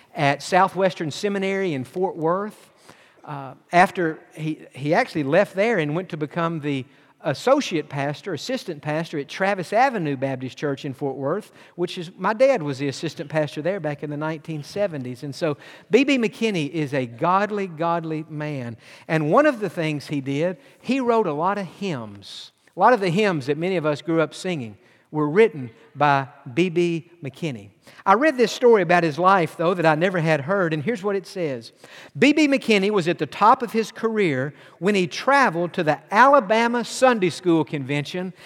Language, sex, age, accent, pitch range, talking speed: English, male, 50-69, American, 150-205 Hz, 185 wpm